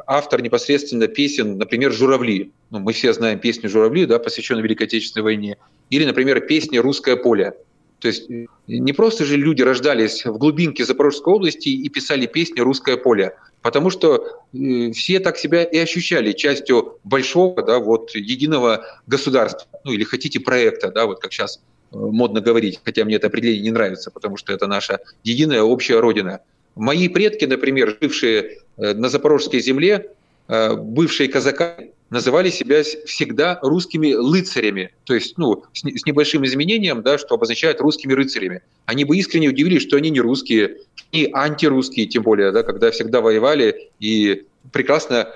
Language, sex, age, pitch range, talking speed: Russian, male, 30-49, 115-165 Hz, 145 wpm